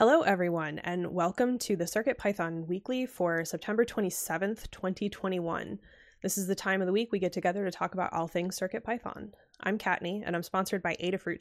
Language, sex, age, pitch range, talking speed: English, female, 20-39, 170-205 Hz, 185 wpm